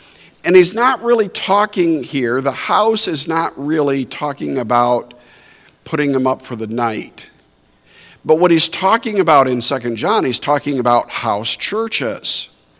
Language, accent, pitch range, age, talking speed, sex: English, American, 130-200 Hz, 50-69, 150 wpm, male